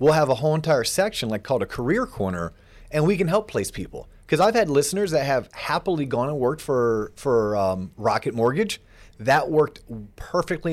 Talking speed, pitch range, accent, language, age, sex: 195 wpm, 105-145 Hz, American, English, 30-49, male